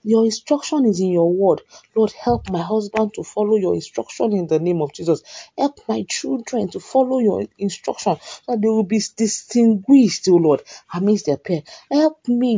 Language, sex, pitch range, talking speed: English, female, 180-240 Hz, 185 wpm